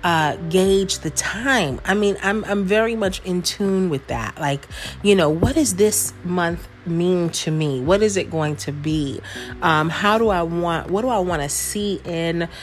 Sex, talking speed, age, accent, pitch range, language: female, 200 wpm, 30-49, American, 150-195 Hz, English